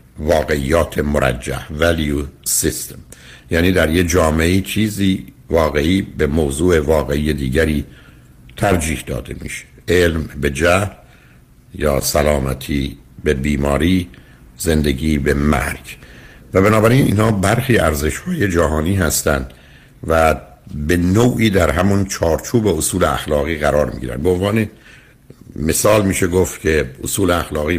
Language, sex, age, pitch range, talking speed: Persian, male, 60-79, 70-90 Hz, 110 wpm